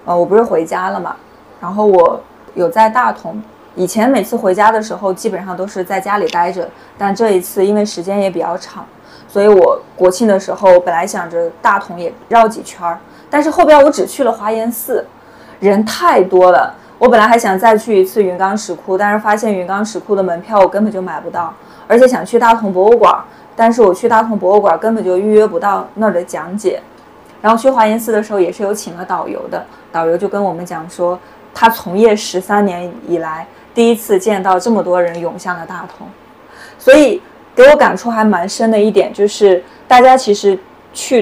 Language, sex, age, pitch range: Chinese, female, 20-39, 180-220 Hz